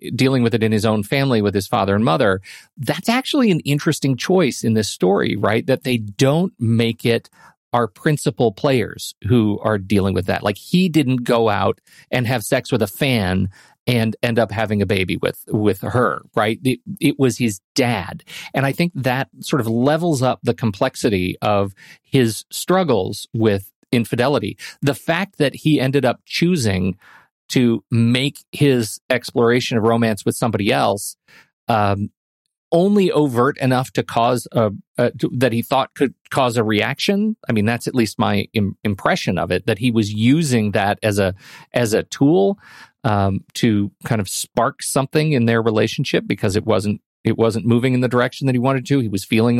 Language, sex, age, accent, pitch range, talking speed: English, male, 40-59, American, 110-135 Hz, 180 wpm